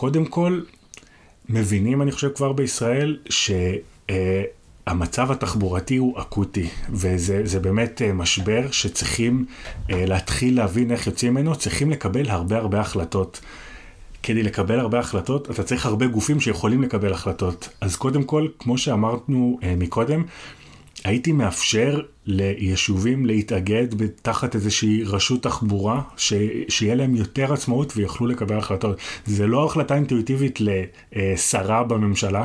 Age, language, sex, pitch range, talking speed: 30-49, Hebrew, male, 100-125 Hz, 115 wpm